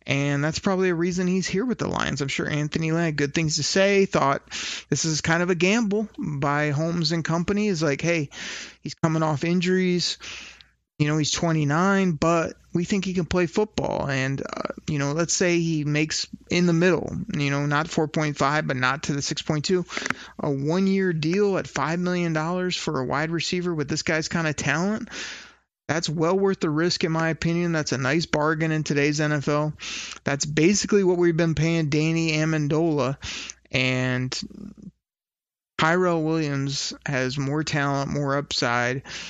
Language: English